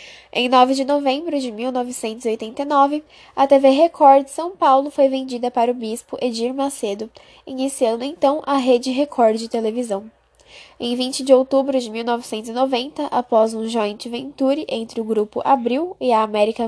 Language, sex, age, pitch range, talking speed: Portuguese, female, 10-29, 240-280 Hz, 155 wpm